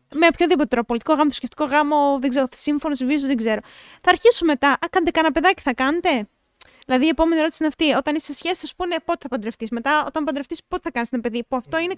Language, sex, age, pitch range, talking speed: Greek, female, 20-39, 250-320 Hz, 240 wpm